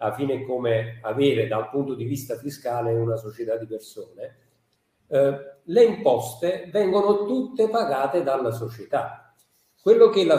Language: Italian